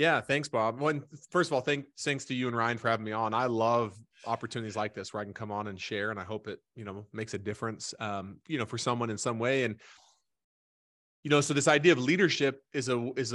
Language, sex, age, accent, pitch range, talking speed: English, male, 30-49, American, 110-140 Hz, 255 wpm